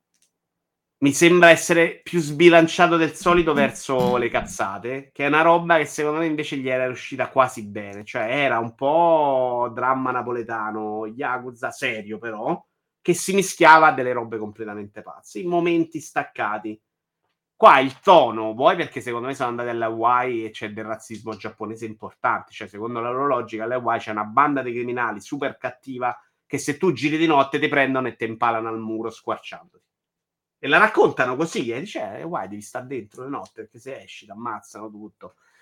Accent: native